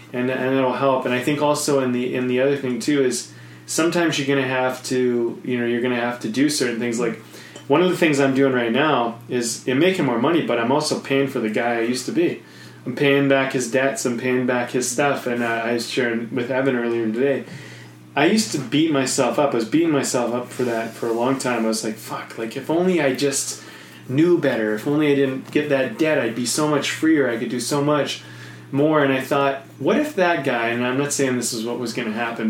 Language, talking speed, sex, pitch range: English, 260 wpm, male, 115-140 Hz